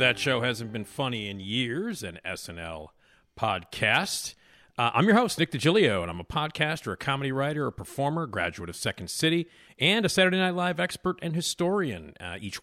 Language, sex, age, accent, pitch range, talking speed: English, male, 40-59, American, 110-165 Hz, 185 wpm